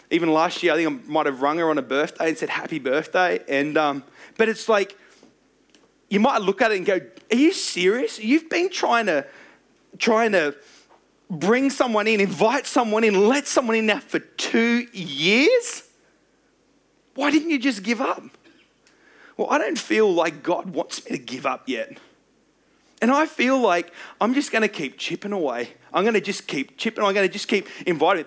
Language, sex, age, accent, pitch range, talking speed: English, male, 30-49, Australian, 180-255 Hz, 195 wpm